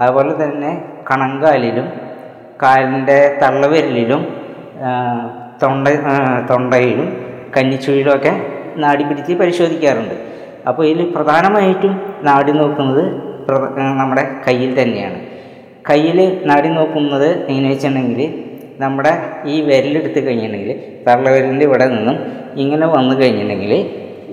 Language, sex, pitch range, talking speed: Malayalam, female, 130-150 Hz, 85 wpm